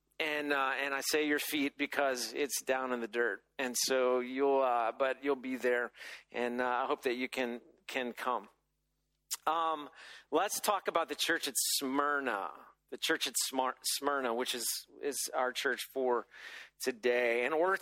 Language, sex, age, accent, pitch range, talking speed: English, male, 40-59, American, 145-185 Hz, 170 wpm